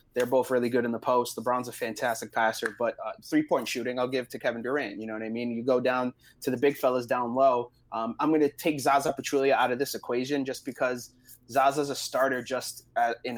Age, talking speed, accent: 20-39, 245 wpm, American